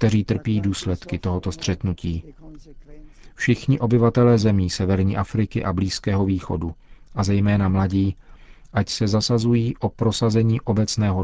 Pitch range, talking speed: 100-115 Hz, 115 wpm